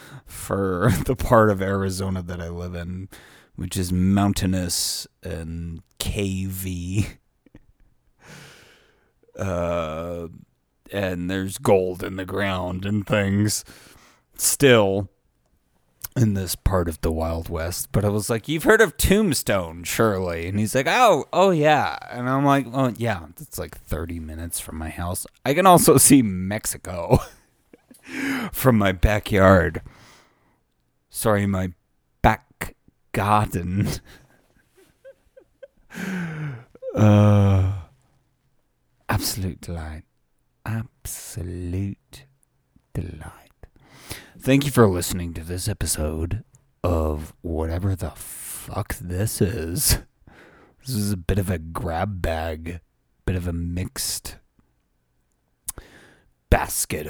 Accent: American